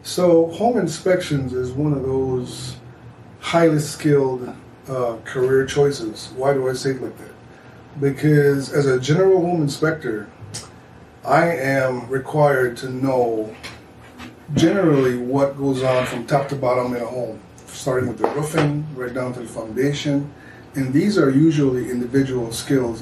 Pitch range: 120-140 Hz